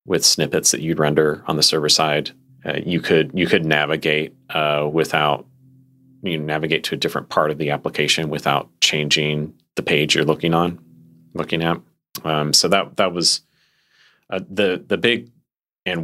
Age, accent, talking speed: 30-49, American, 165 wpm